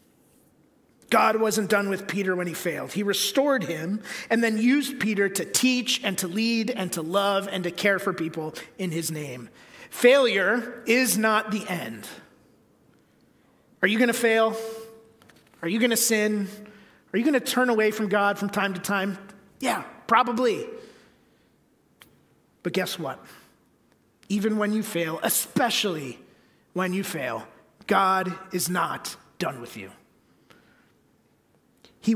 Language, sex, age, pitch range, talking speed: English, male, 30-49, 180-220 Hz, 140 wpm